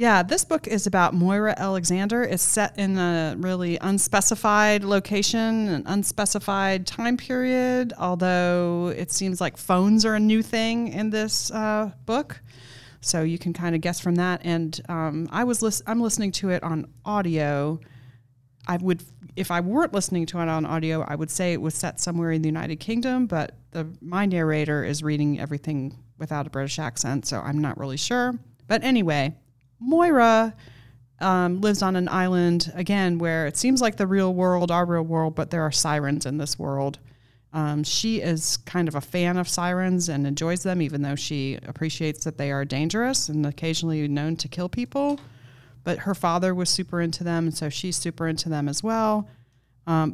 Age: 30-49